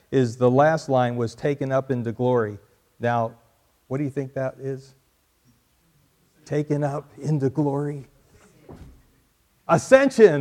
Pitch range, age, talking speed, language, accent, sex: 130-165 Hz, 50-69, 120 wpm, English, American, male